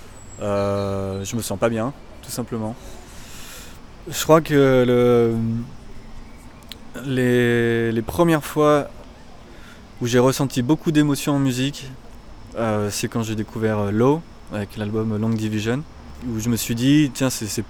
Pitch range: 105-125 Hz